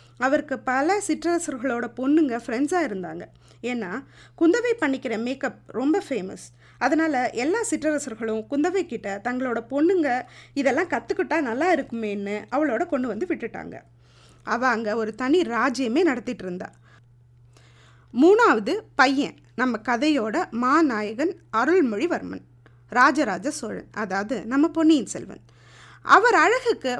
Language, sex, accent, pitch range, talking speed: Tamil, female, native, 215-320 Hz, 105 wpm